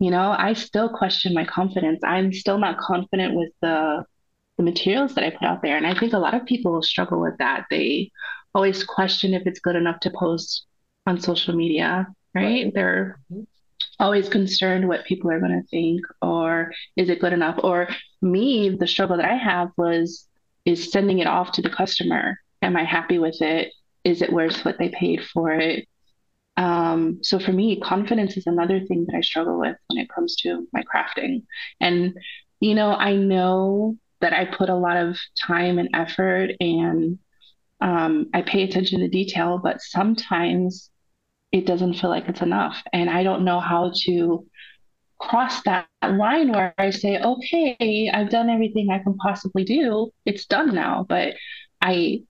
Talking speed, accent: 180 wpm, American